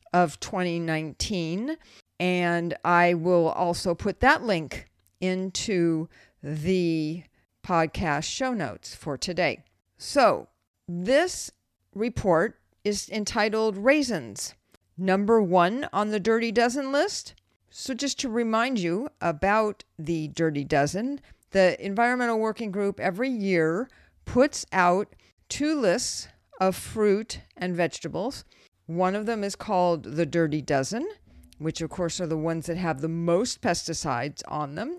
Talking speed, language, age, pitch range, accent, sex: 125 wpm, English, 50-69, 160-215 Hz, American, female